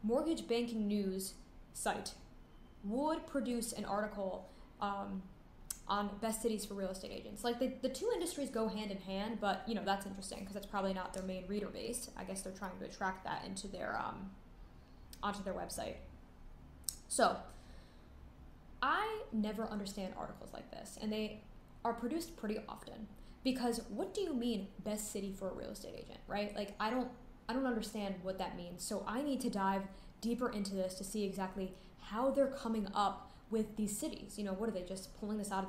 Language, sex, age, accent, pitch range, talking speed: English, female, 10-29, American, 195-235 Hz, 190 wpm